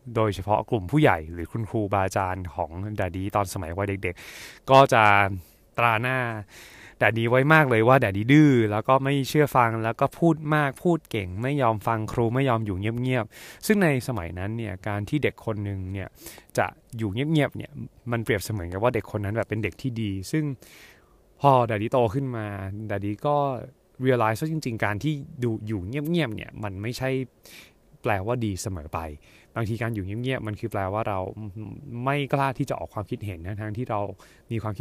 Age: 20-39